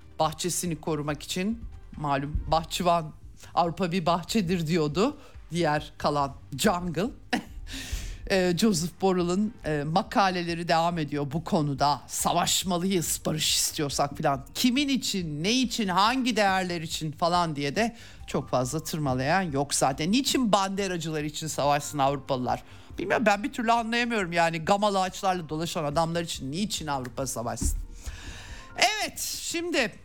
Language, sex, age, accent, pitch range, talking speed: Turkish, male, 50-69, native, 150-215 Hz, 120 wpm